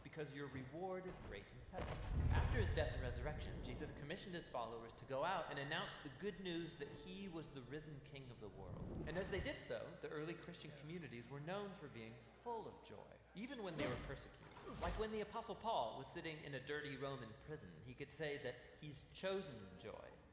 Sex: male